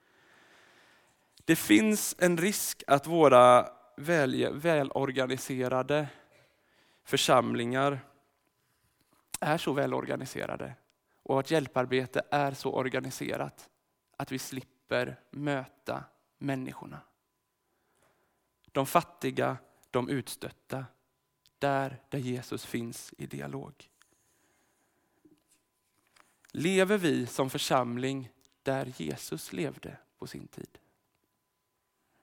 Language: Swedish